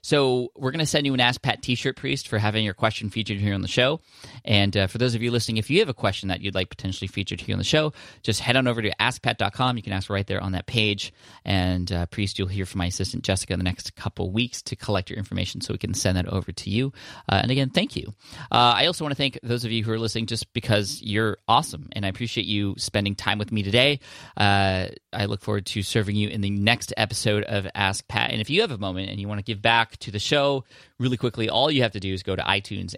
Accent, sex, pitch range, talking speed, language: American, male, 95-120 Hz, 275 wpm, English